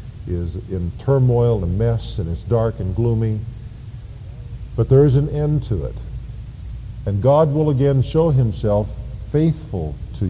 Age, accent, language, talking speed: 50-69, American, English, 145 wpm